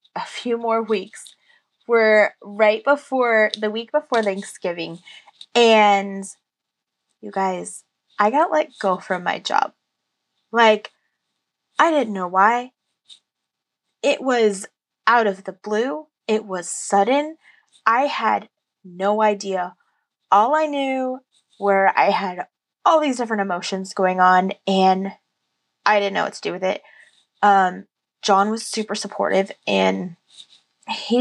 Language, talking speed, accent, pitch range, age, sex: English, 130 wpm, American, 180-235 Hz, 20-39, female